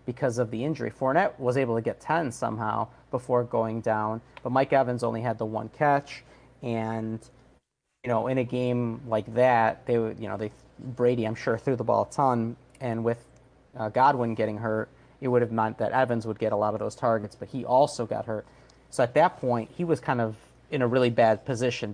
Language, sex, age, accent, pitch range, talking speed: English, male, 30-49, American, 110-125 Hz, 220 wpm